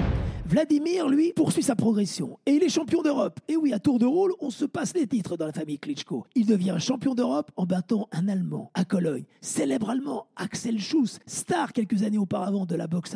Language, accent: French, French